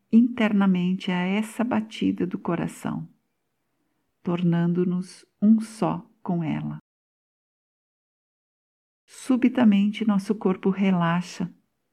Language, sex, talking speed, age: Portuguese, female, 75 wpm, 60-79